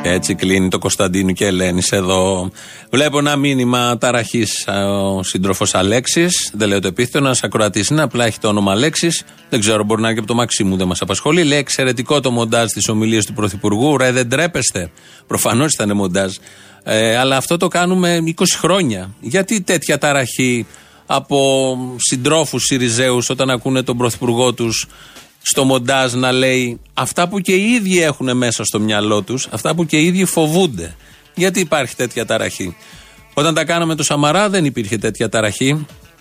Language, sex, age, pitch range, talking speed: Greek, male, 30-49, 115-160 Hz, 170 wpm